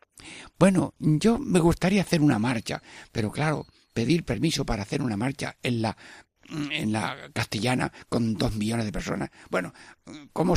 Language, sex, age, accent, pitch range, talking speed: Spanish, male, 60-79, Spanish, 110-145 Hz, 155 wpm